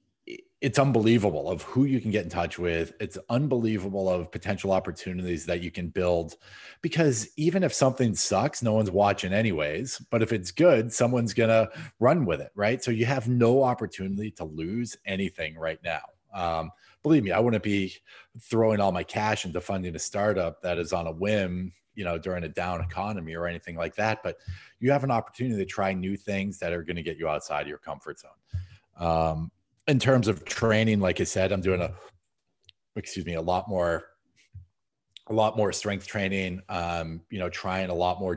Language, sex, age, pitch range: English, male, 30-49, 85-110 Hz